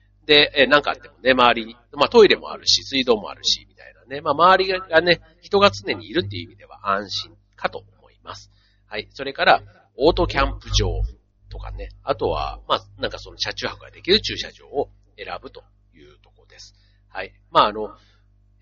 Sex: male